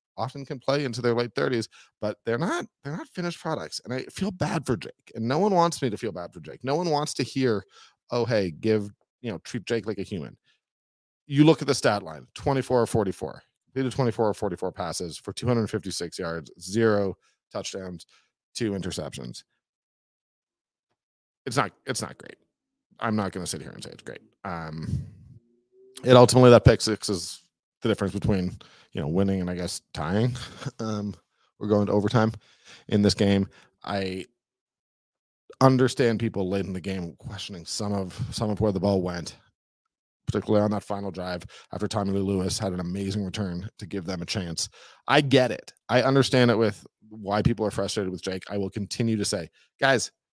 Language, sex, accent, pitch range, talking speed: English, male, American, 95-125 Hz, 190 wpm